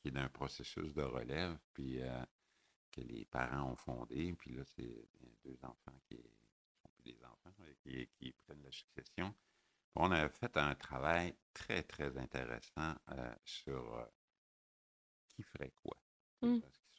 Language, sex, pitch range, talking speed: French, male, 65-75 Hz, 160 wpm